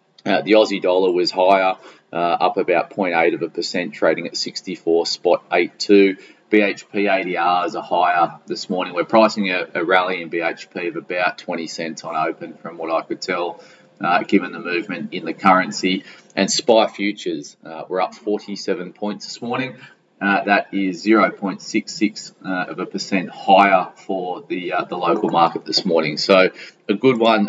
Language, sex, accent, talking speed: English, male, Australian, 175 wpm